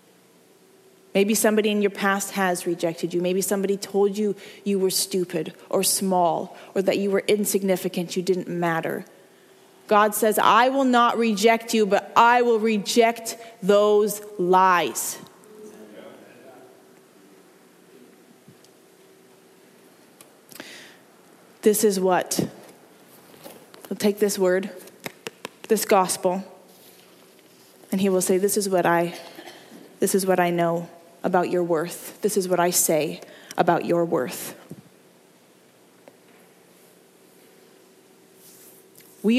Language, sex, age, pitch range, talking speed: English, female, 20-39, 180-210 Hz, 110 wpm